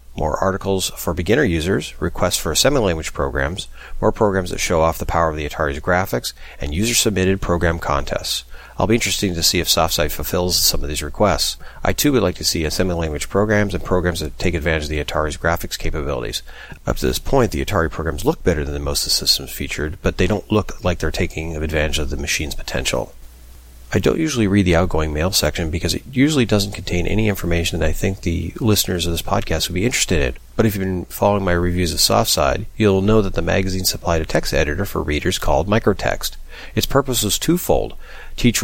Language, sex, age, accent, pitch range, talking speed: English, male, 40-59, American, 75-95 Hz, 215 wpm